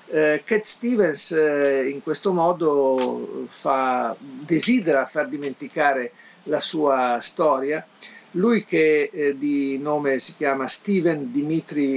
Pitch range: 135-175 Hz